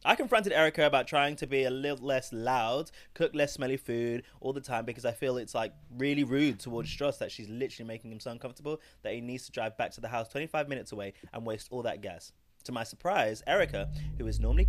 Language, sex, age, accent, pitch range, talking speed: English, male, 20-39, British, 115-145 Hz, 235 wpm